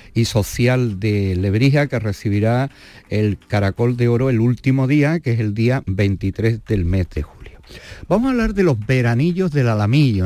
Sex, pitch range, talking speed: male, 100-125 Hz, 175 wpm